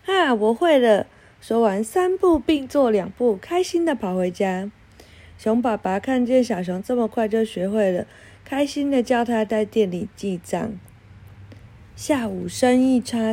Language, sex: Chinese, female